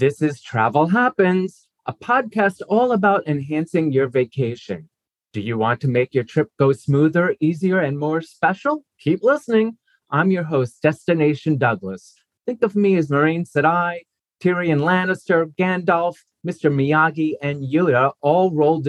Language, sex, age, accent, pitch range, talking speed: English, male, 30-49, American, 130-175 Hz, 145 wpm